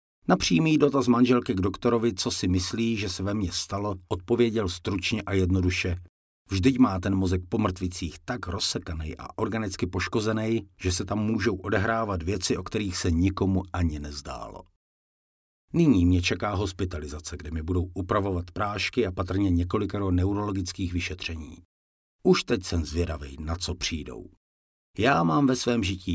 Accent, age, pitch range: Czech, 50-69, 85-110 Hz